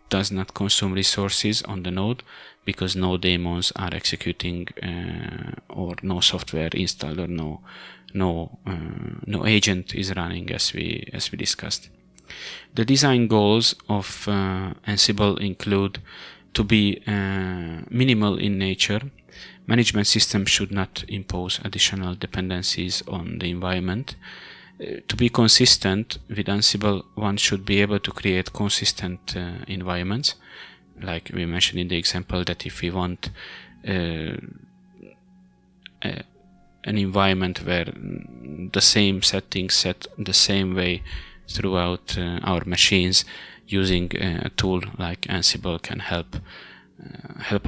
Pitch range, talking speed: 90-105 Hz, 130 wpm